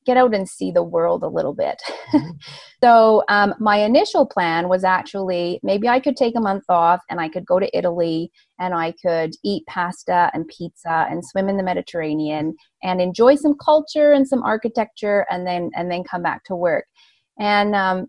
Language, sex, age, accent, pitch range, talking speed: English, female, 30-49, American, 180-235 Hz, 190 wpm